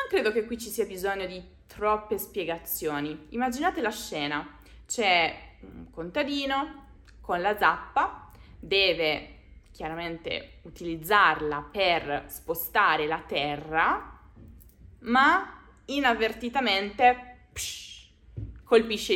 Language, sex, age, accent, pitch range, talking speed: Italian, female, 20-39, native, 175-245 Hz, 90 wpm